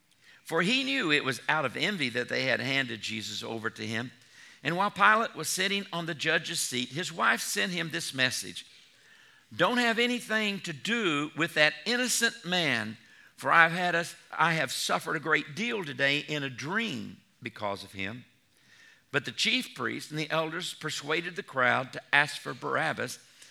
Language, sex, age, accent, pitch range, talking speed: English, male, 50-69, American, 125-170 Hz, 180 wpm